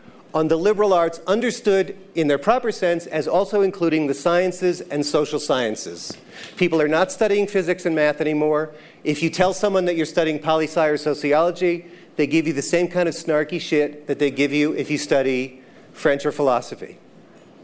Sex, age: male, 40-59